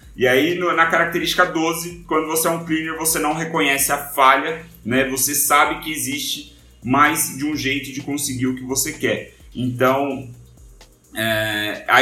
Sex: male